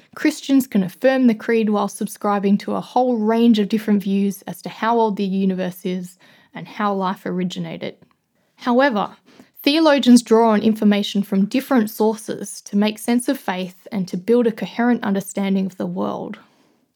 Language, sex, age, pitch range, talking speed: English, female, 20-39, 195-240 Hz, 165 wpm